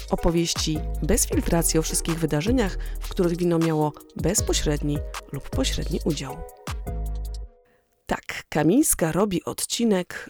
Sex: female